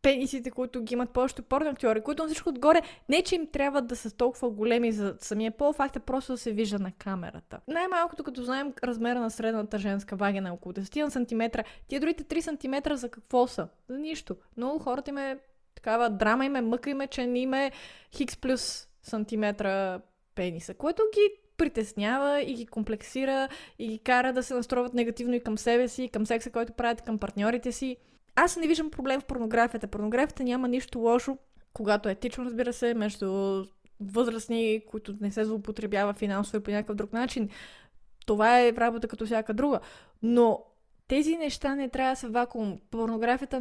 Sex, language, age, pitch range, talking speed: female, Bulgarian, 20-39, 220-270 Hz, 180 wpm